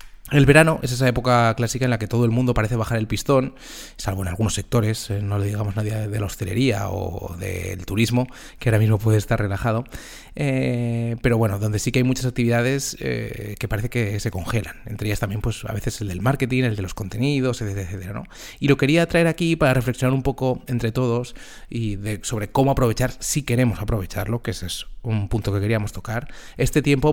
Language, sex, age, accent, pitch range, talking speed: English, male, 30-49, Spanish, 105-125 Hz, 210 wpm